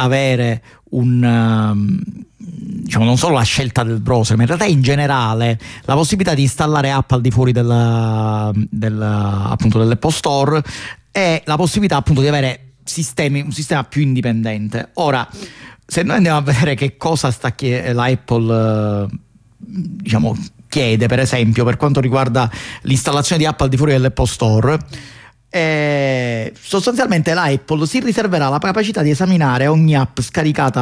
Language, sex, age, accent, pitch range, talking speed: Italian, male, 40-59, native, 120-160 Hz, 150 wpm